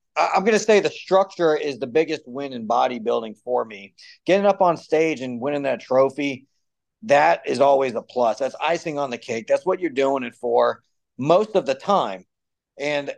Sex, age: male, 40-59